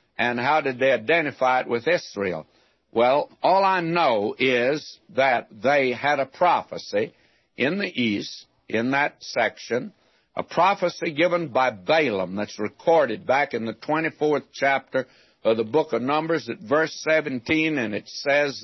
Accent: American